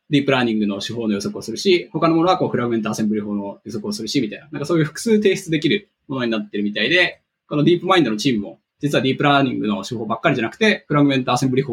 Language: Japanese